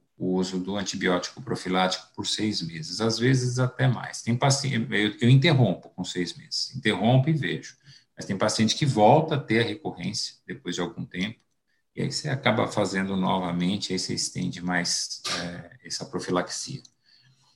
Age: 50-69